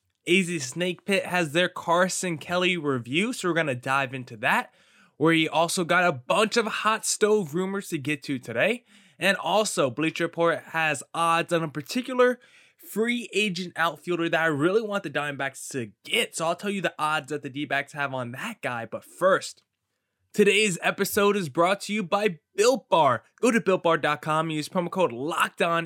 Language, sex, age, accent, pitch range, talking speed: English, male, 20-39, American, 140-195 Hz, 185 wpm